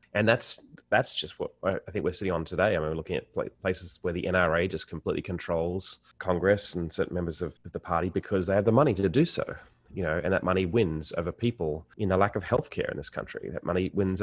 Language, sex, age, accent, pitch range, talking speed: English, male, 30-49, Australian, 85-100 Hz, 240 wpm